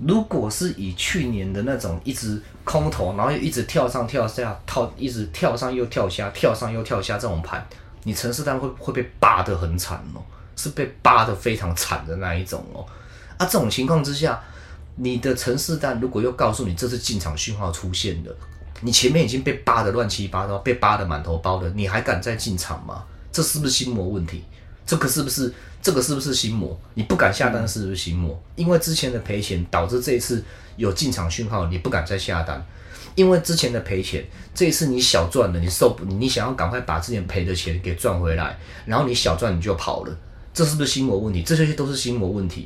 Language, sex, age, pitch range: Chinese, male, 30-49, 90-125 Hz